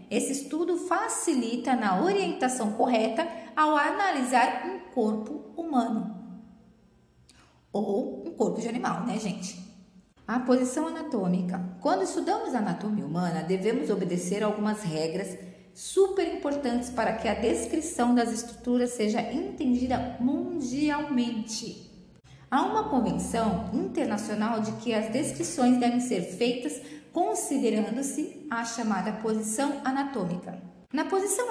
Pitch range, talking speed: 210-275 Hz, 110 wpm